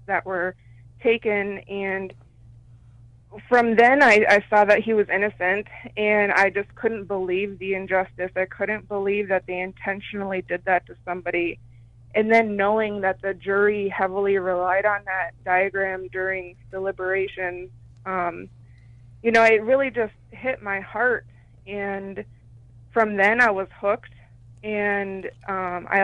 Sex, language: female, English